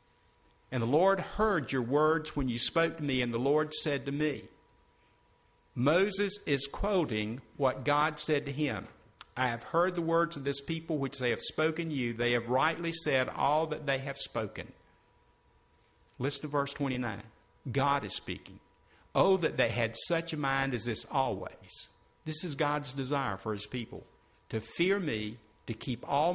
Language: English